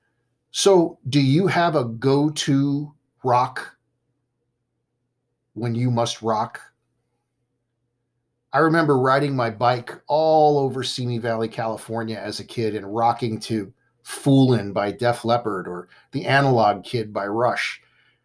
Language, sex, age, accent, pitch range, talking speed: English, male, 50-69, American, 120-140 Hz, 120 wpm